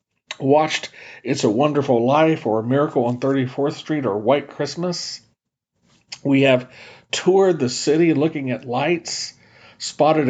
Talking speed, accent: 135 wpm, American